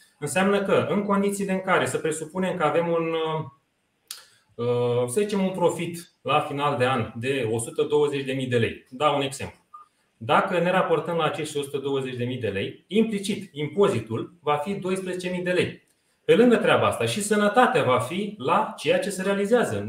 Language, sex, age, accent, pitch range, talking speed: Romanian, male, 30-49, native, 130-180 Hz, 165 wpm